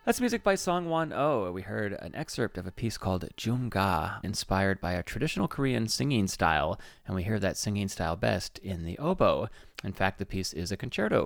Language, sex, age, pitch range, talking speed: English, male, 30-49, 90-115 Hz, 205 wpm